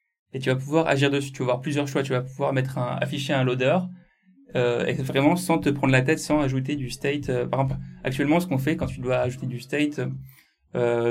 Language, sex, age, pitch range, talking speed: English, male, 20-39, 130-150 Hz, 245 wpm